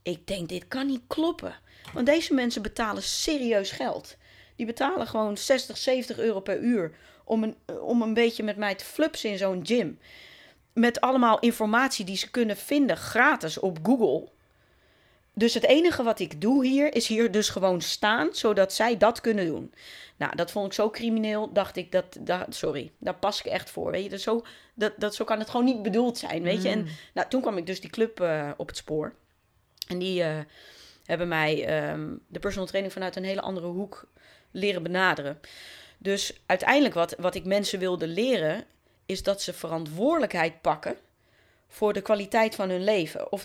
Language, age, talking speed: Dutch, 30-49, 190 wpm